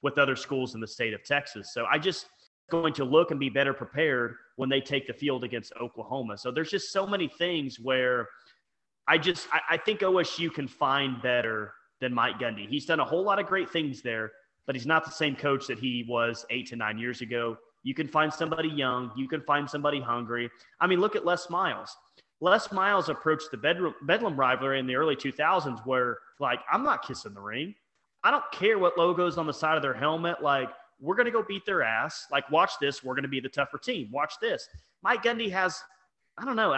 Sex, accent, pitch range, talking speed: male, American, 135-185 Hz, 225 wpm